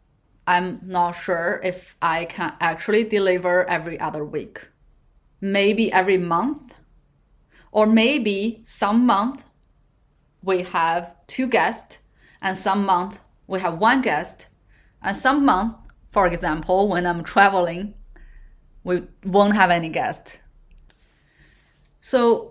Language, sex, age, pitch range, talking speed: English, female, 30-49, 175-215 Hz, 115 wpm